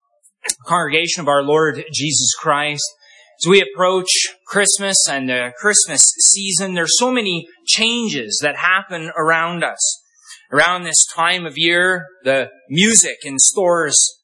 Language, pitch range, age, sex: English, 160-210 Hz, 20-39, male